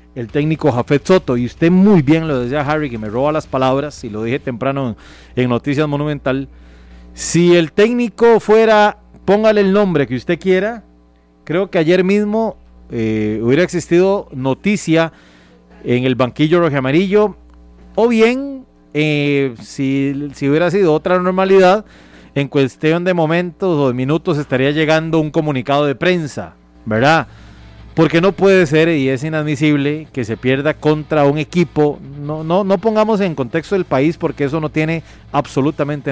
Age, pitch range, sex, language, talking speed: 30-49, 135-185 Hz, male, Spanish, 160 wpm